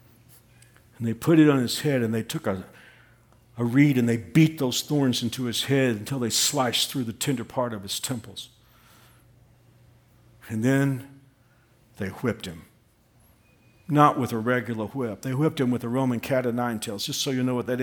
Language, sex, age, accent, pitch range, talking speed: English, male, 50-69, American, 120-140 Hz, 190 wpm